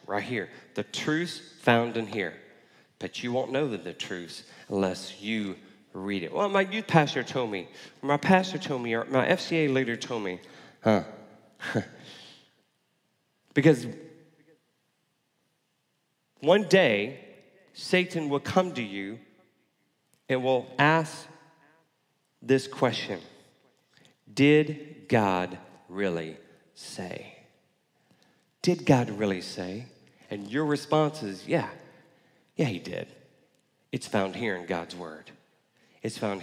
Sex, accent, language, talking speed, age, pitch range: male, American, English, 115 wpm, 30-49, 105-155 Hz